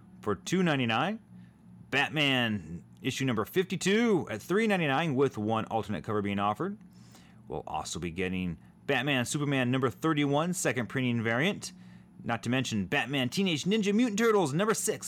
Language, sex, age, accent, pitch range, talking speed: English, male, 30-49, American, 110-160 Hz, 140 wpm